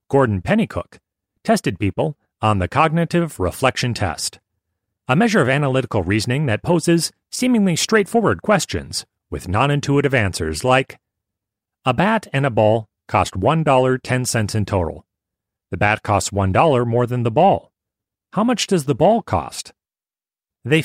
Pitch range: 105-160 Hz